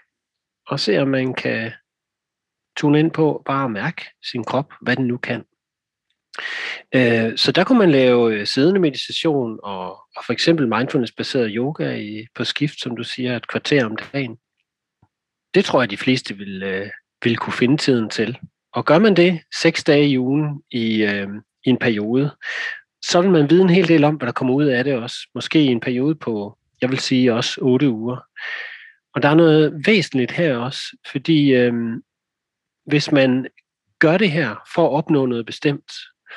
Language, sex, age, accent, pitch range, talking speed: Danish, male, 30-49, native, 120-160 Hz, 170 wpm